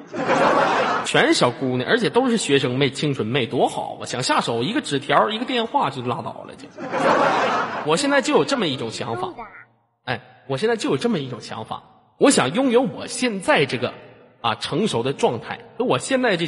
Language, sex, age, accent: Chinese, male, 20-39, native